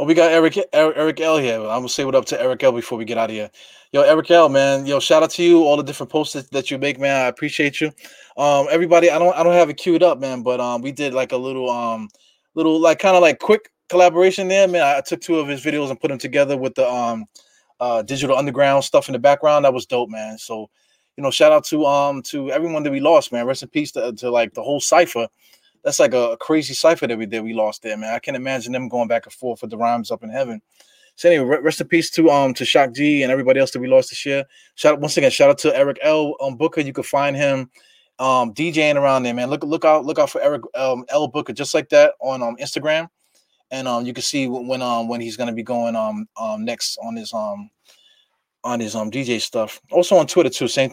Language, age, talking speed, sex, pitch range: English, 20-39, 265 wpm, male, 125-160 Hz